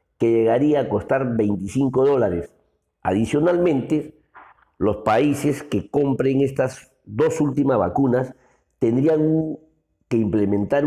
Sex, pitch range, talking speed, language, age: male, 105-150 Hz, 100 wpm, Spanish, 50-69